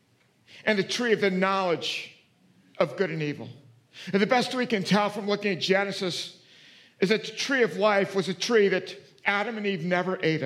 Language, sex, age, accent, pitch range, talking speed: English, male, 50-69, American, 170-225 Hz, 200 wpm